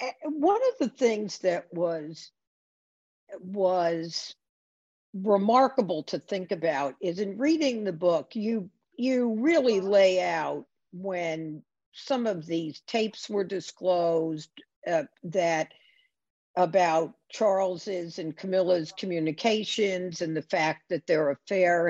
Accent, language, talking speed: American, English, 110 wpm